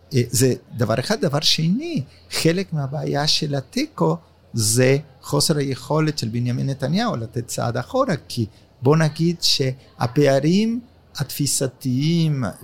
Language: Hebrew